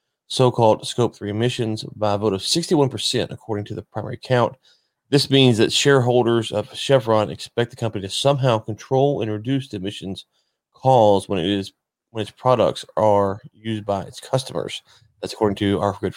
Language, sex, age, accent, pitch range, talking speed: English, male, 30-49, American, 110-135 Hz, 175 wpm